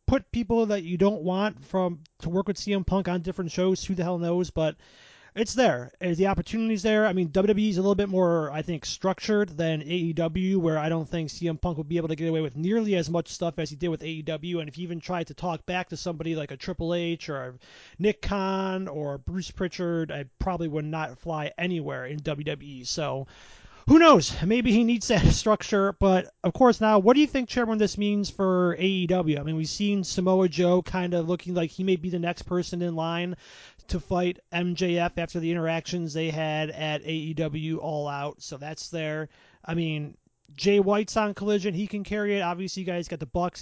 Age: 30-49